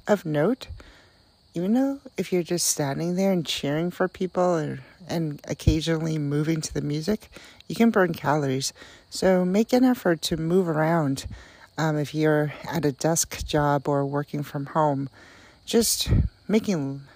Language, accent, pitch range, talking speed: English, American, 145-190 Hz, 155 wpm